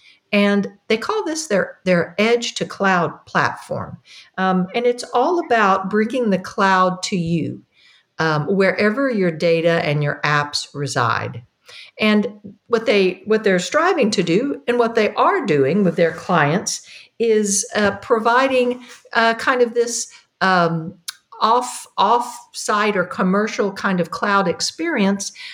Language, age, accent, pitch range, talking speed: English, 50-69, American, 180-225 Hz, 145 wpm